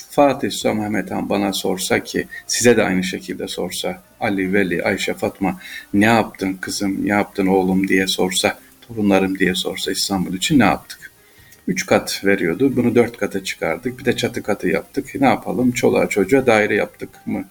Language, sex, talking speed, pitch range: Turkish, male, 165 wpm, 100-130 Hz